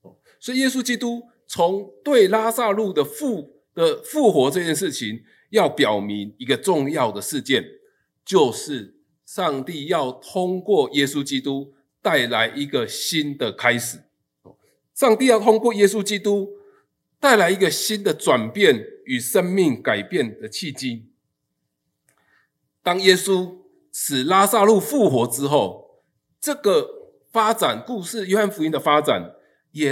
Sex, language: male, Chinese